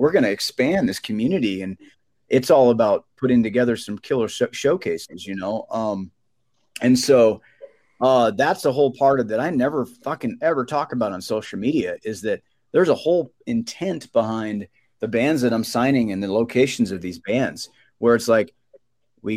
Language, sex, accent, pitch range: English, male, American, 105-125 Hz